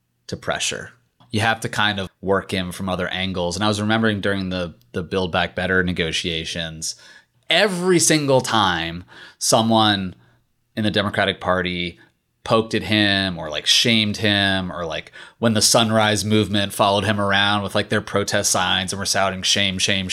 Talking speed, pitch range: 170 wpm, 95-110 Hz